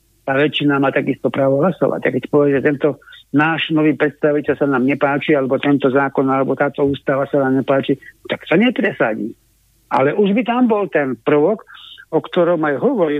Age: 60-79